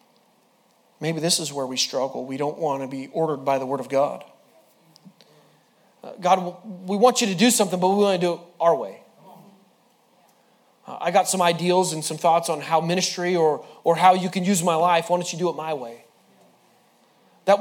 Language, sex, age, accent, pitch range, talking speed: English, male, 30-49, American, 155-215 Hz, 200 wpm